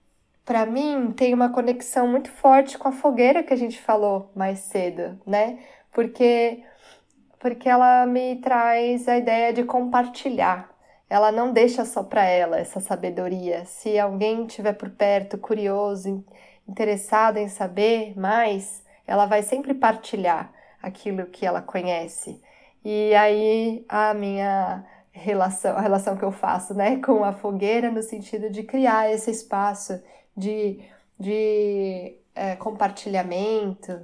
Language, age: Portuguese, 10-29